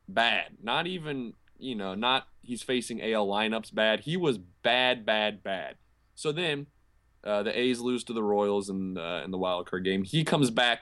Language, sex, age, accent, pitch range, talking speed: English, male, 20-39, American, 105-150 Hz, 195 wpm